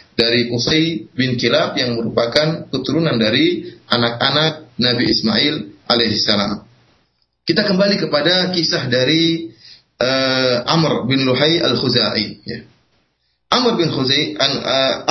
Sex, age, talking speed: male, 30-49, 110 wpm